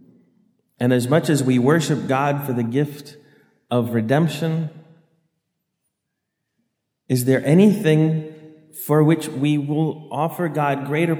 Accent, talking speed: American, 120 wpm